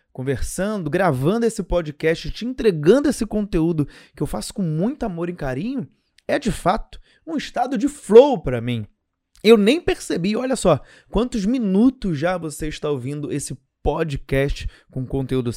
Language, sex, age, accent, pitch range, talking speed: Portuguese, male, 20-39, Brazilian, 135-205 Hz, 155 wpm